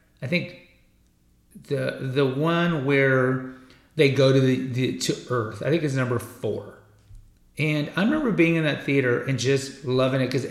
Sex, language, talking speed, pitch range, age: male, English, 170 wpm, 120-140 Hz, 40-59